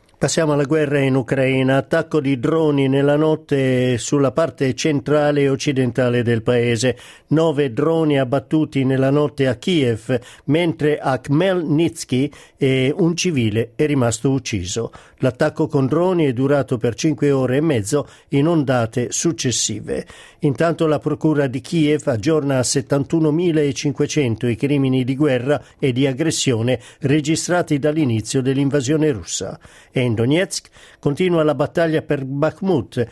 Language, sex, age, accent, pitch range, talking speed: Italian, male, 50-69, native, 130-155 Hz, 130 wpm